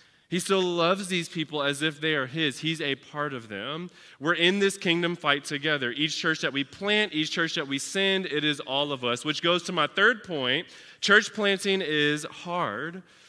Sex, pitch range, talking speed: male, 160-205 Hz, 210 wpm